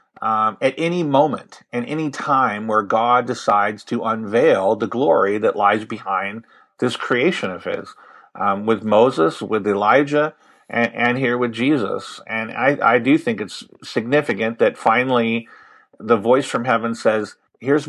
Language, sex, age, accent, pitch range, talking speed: English, male, 50-69, American, 110-140 Hz, 155 wpm